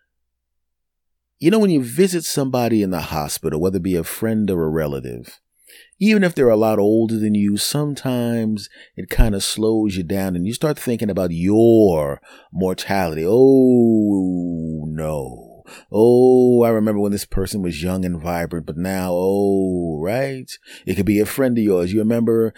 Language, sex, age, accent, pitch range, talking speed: English, male, 30-49, American, 95-115 Hz, 170 wpm